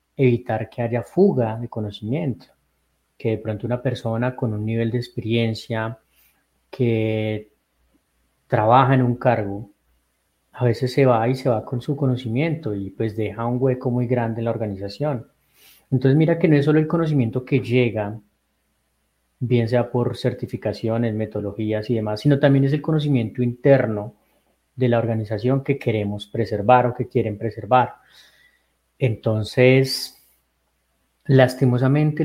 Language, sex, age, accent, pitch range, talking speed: Spanish, male, 30-49, Colombian, 110-140 Hz, 140 wpm